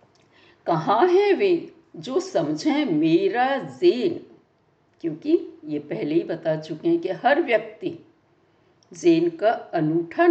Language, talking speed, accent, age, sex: Hindi, 115 wpm, native, 60-79, female